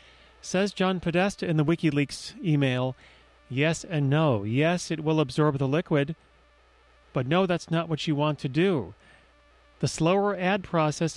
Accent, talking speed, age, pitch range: American, 155 wpm, 40-59, 135-165 Hz